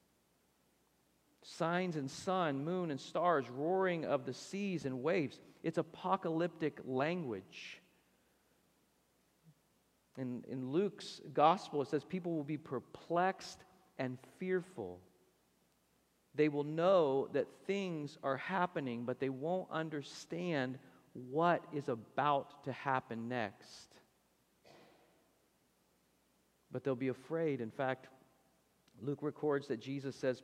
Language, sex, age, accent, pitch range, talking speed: English, male, 40-59, American, 110-150 Hz, 110 wpm